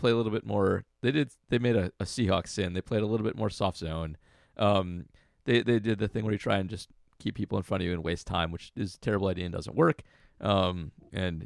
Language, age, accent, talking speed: English, 30-49, American, 265 wpm